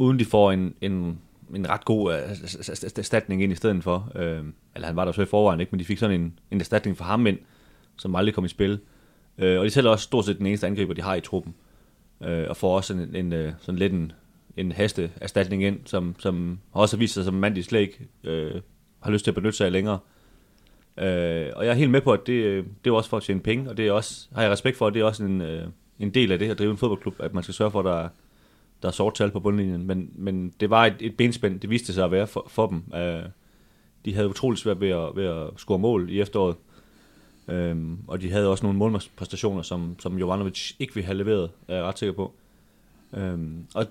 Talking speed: 245 wpm